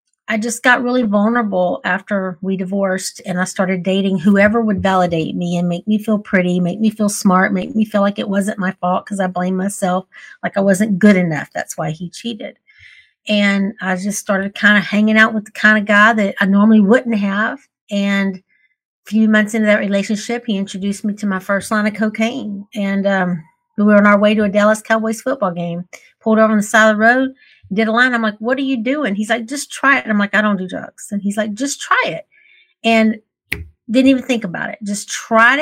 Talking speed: 225 wpm